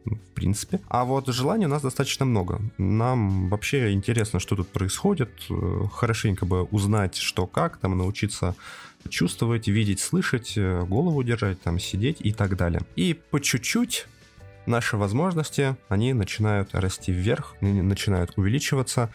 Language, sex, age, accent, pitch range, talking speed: Russian, male, 20-39, native, 95-120 Hz, 130 wpm